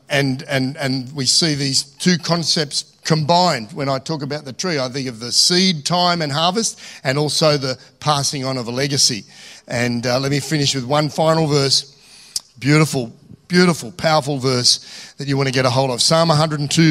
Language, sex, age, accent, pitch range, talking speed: English, male, 50-69, Australian, 130-160 Hz, 190 wpm